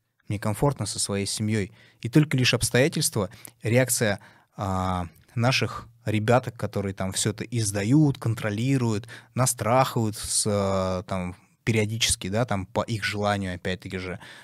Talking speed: 125 wpm